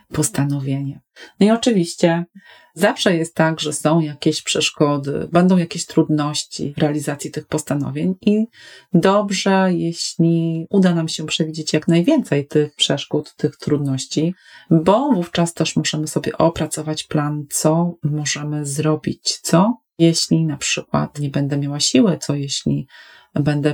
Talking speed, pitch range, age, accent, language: 130 wpm, 150-180 Hz, 30-49, native, Polish